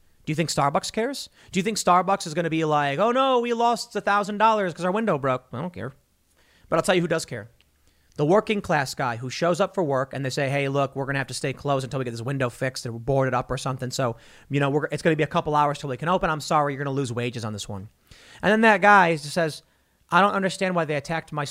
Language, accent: English, American